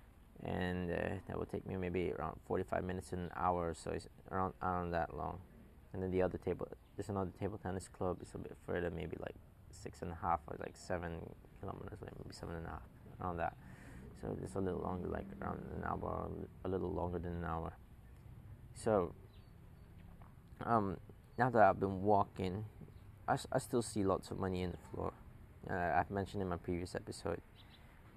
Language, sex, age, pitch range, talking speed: English, male, 20-39, 90-105 Hz, 195 wpm